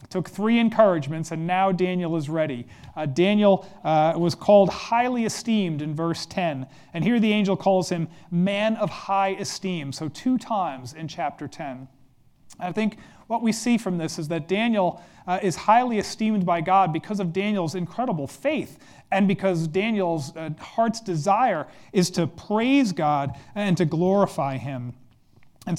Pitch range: 150-195 Hz